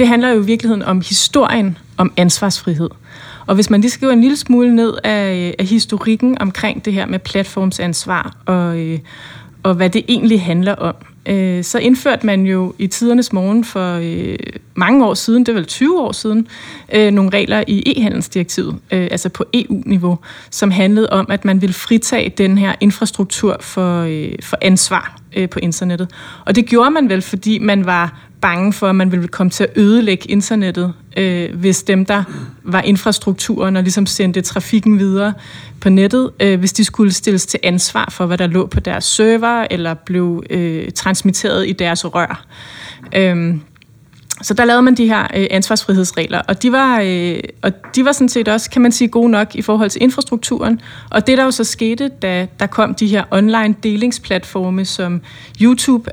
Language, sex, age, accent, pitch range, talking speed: Danish, female, 20-39, native, 185-225 Hz, 170 wpm